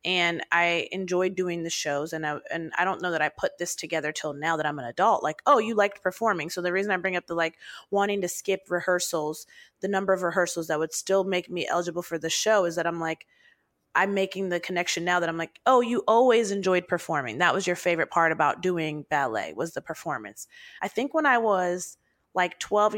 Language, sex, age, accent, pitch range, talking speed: English, female, 30-49, American, 170-200 Hz, 225 wpm